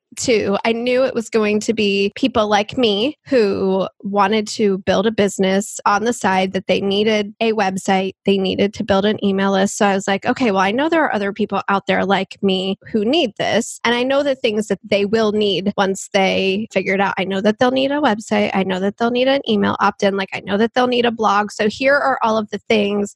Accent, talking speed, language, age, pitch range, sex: American, 245 wpm, English, 20-39, 200-235 Hz, female